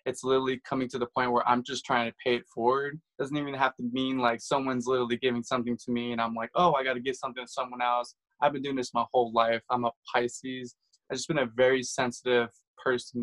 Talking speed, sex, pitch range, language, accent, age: 250 wpm, male, 120-135 Hz, English, American, 20-39